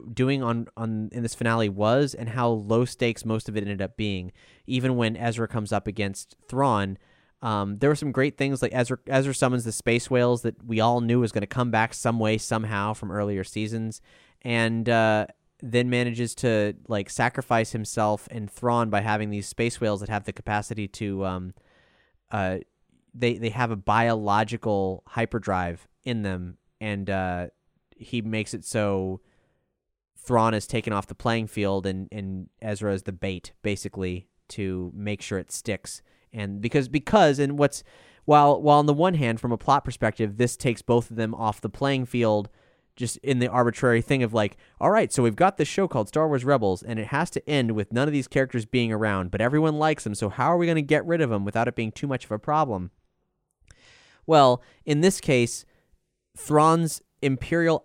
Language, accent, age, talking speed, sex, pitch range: English, American, 20-39, 195 wpm, male, 105-125 Hz